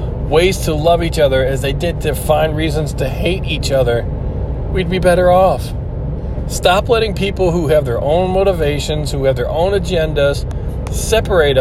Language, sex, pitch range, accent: English, male, 120-160 Hz, American